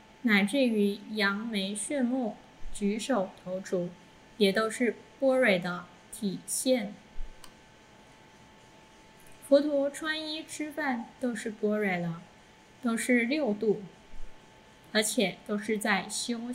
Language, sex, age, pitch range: Chinese, female, 10-29, 195-250 Hz